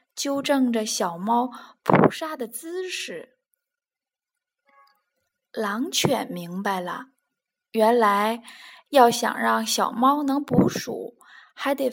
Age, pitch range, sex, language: 20-39, 235-315 Hz, female, Chinese